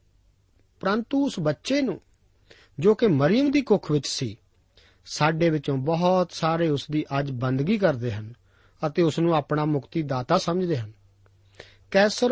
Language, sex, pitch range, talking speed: Punjabi, male, 110-175 Hz, 145 wpm